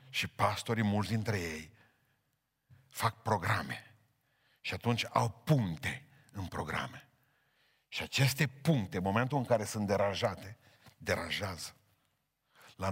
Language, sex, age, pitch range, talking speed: Romanian, male, 50-69, 100-130 Hz, 110 wpm